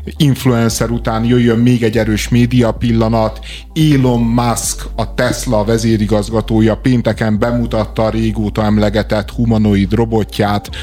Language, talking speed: Hungarian, 110 wpm